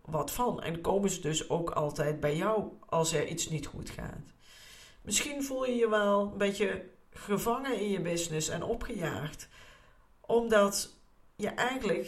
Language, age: Dutch, 50-69